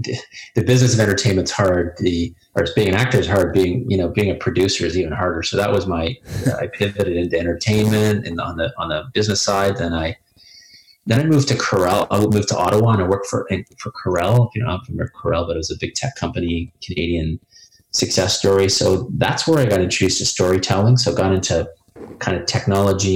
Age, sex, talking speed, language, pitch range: 30-49, male, 220 wpm, English, 90-115 Hz